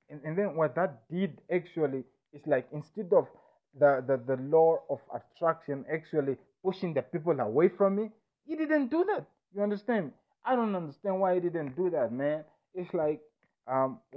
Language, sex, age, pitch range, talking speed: English, male, 30-49, 130-180 Hz, 180 wpm